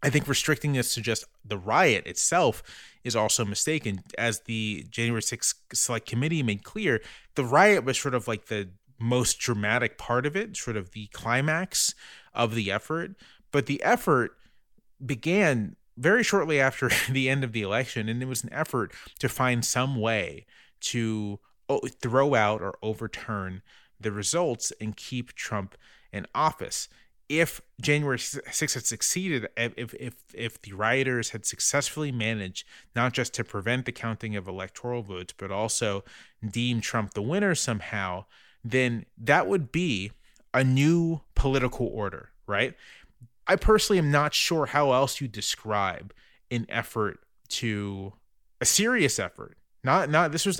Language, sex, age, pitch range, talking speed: English, male, 30-49, 110-140 Hz, 155 wpm